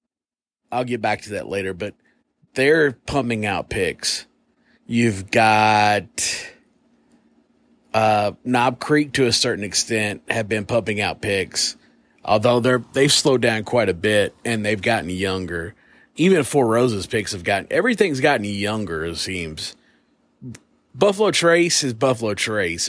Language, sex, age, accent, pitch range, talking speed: English, male, 30-49, American, 105-145 Hz, 140 wpm